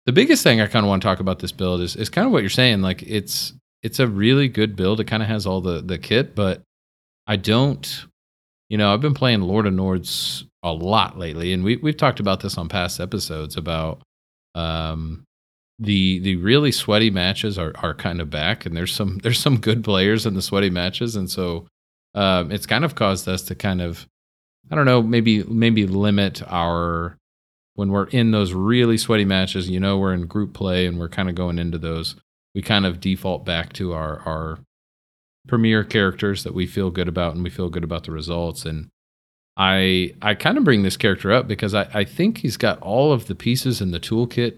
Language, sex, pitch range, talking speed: English, male, 85-110 Hz, 220 wpm